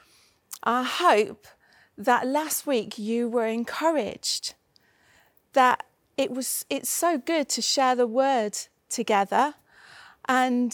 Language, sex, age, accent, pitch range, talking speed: English, female, 30-49, British, 220-275 Hz, 110 wpm